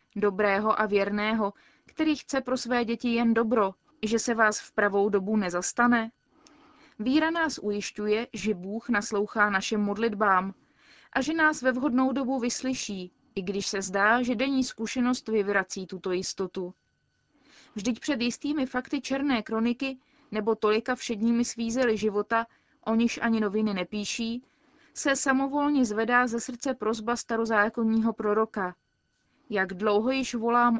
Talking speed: 135 wpm